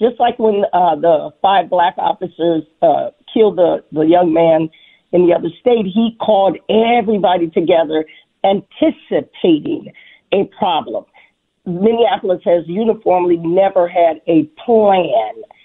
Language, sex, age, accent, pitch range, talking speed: English, female, 40-59, American, 175-220 Hz, 125 wpm